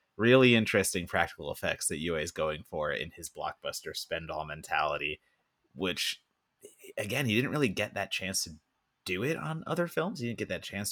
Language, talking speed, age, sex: English, 185 wpm, 30-49, male